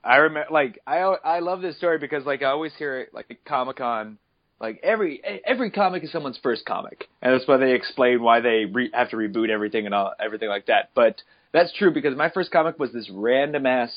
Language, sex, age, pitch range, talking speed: English, male, 20-39, 120-170 Hz, 230 wpm